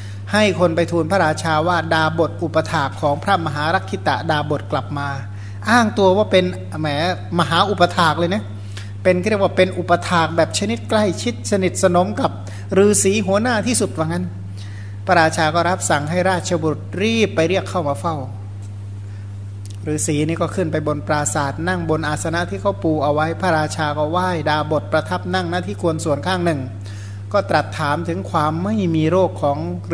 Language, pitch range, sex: Thai, 100-165 Hz, male